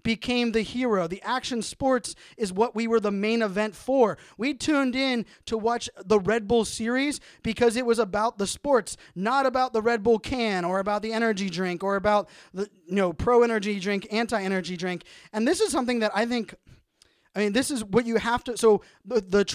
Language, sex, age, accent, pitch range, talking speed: English, male, 20-39, American, 195-235 Hz, 215 wpm